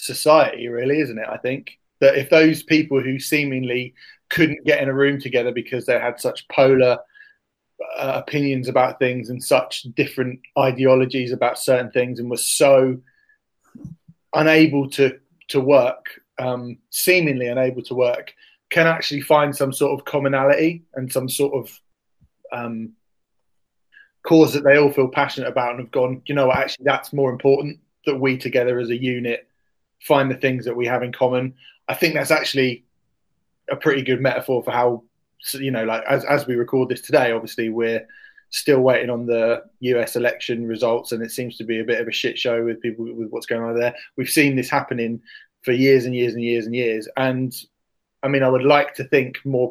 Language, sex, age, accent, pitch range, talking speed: English, male, 30-49, British, 120-145 Hz, 185 wpm